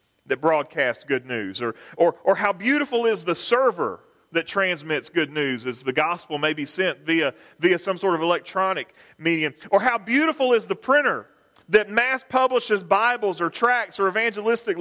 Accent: American